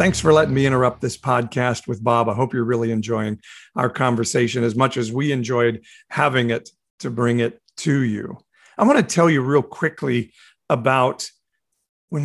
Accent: American